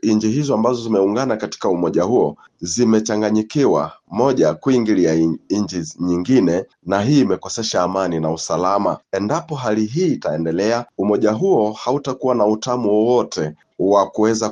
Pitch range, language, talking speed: 100-135 Hz, Swahili, 125 wpm